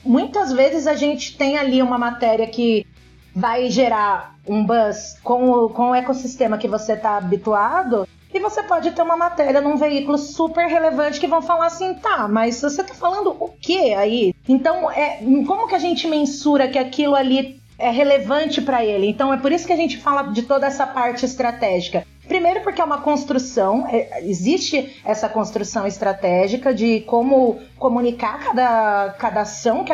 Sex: female